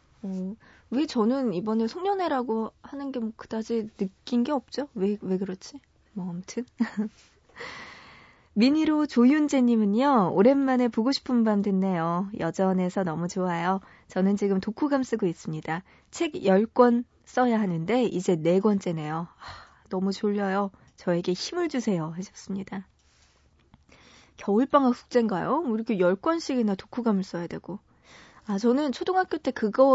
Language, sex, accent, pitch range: Korean, female, native, 190-260 Hz